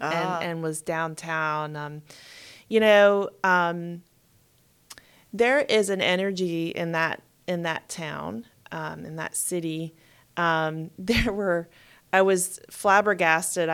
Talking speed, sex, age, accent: 120 wpm, female, 30-49, American